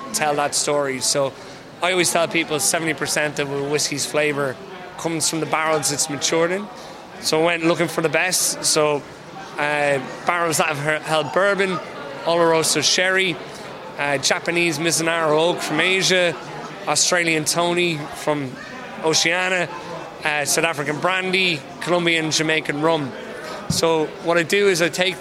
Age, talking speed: 20-39, 145 wpm